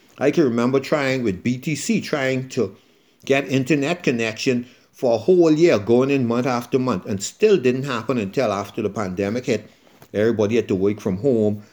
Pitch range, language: 105-140 Hz, English